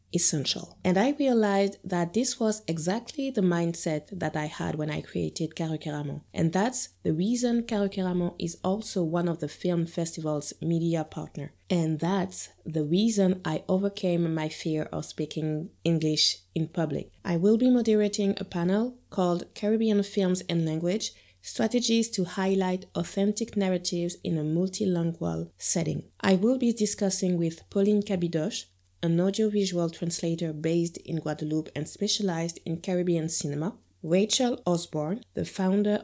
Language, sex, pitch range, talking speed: English, female, 160-200 Hz, 145 wpm